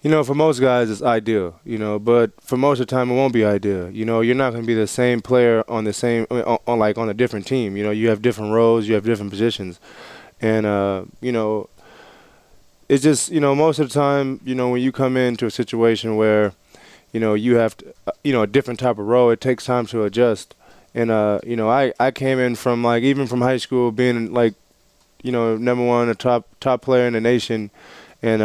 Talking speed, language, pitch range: 245 wpm, English, 110-130 Hz